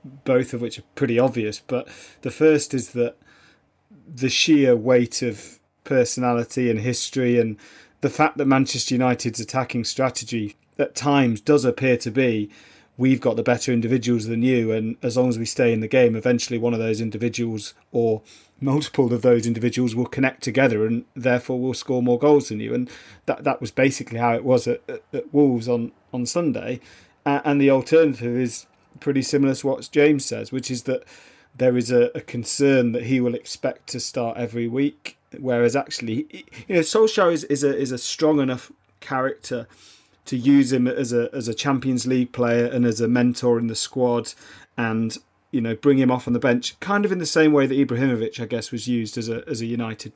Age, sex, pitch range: 40-59, male, 120-135 Hz